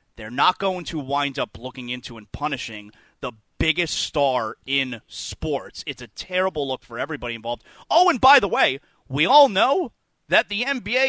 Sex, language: male, English